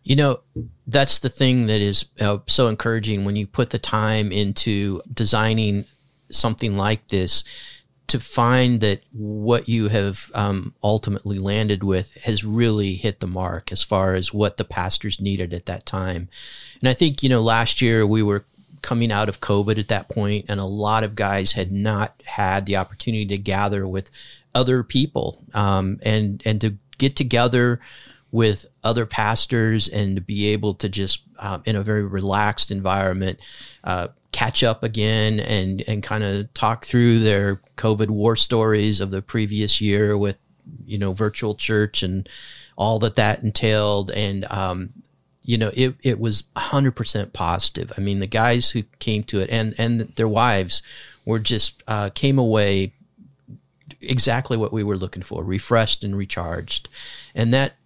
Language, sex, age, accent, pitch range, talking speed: English, male, 30-49, American, 100-115 Hz, 165 wpm